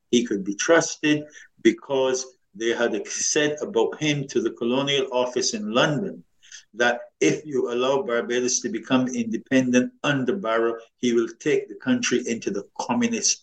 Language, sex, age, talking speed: English, male, 50-69, 150 wpm